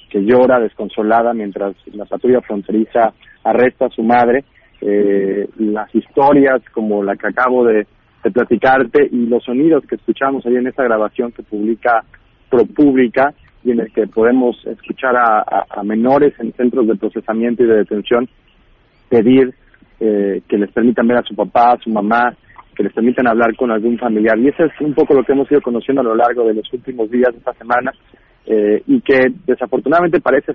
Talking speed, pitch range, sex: 185 wpm, 110-130 Hz, male